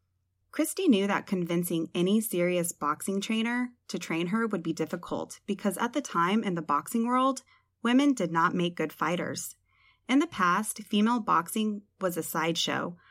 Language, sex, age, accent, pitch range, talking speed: English, female, 20-39, American, 165-235 Hz, 165 wpm